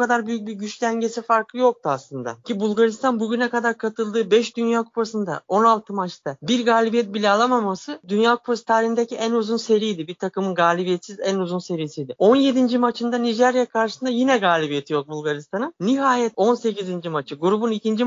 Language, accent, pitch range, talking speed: Turkish, native, 195-245 Hz, 155 wpm